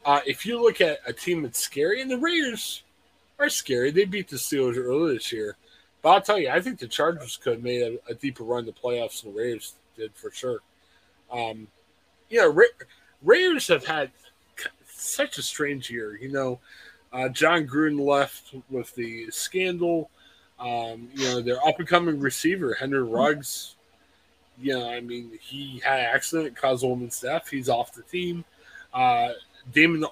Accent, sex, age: American, male, 20-39